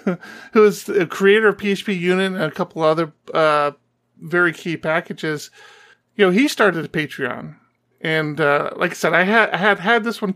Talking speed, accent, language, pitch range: 190 wpm, American, English, 155-195 Hz